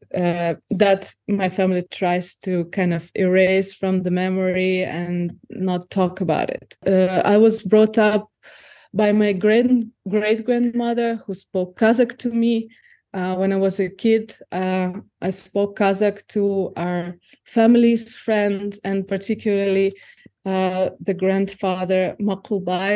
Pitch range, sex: 185-215 Hz, female